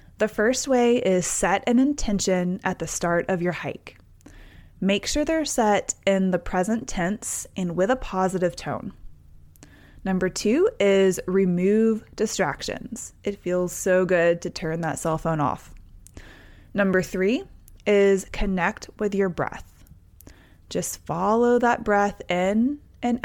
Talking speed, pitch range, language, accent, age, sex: 140 wpm, 170-220 Hz, English, American, 20-39, female